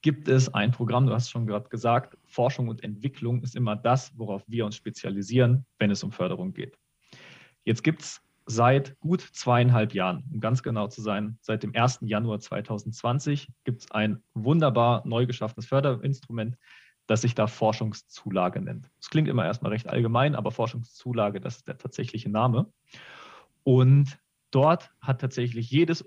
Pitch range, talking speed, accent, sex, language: 115-140 Hz, 165 wpm, German, male, German